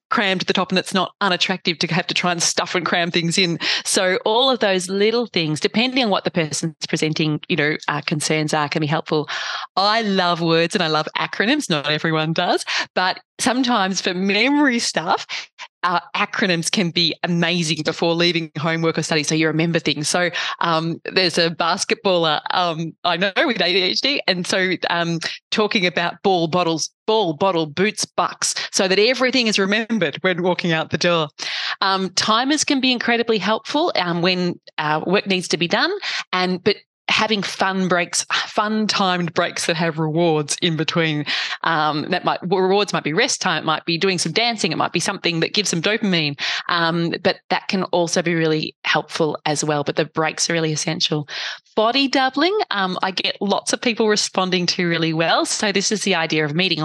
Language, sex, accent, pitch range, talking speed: English, female, Australian, 165-205 Hz, 190 wpm